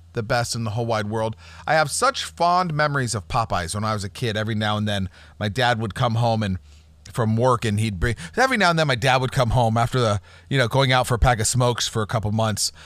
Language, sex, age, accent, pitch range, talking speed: English, male, 40-59, American, 105-165 Hz, 270 wpm